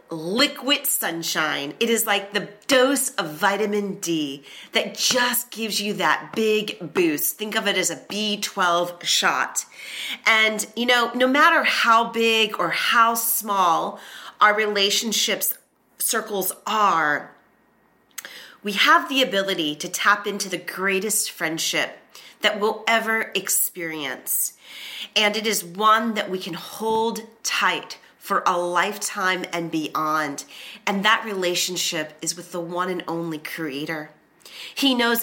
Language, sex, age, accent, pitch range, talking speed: English, female, 30-49, American, 170-225 Hz, 135 wpm